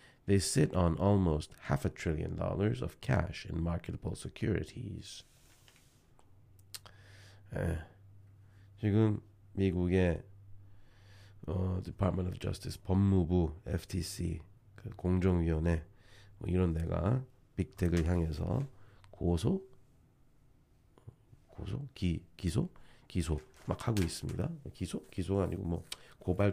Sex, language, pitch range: male, Korean, 85-110 Hz